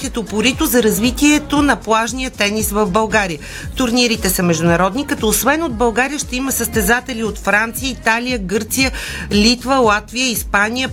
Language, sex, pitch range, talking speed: Bulgarian, female, 195-245 Hz, 135 wpm